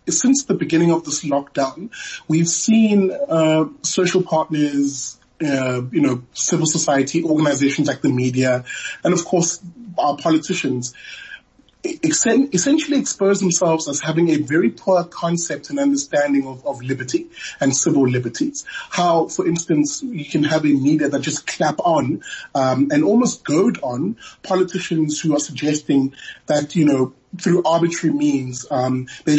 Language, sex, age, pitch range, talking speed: English, male, 20-39, 140-185 Hz, 145 wpm